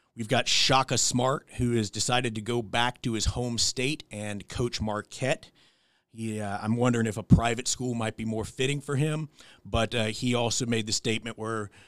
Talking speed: 185 wpm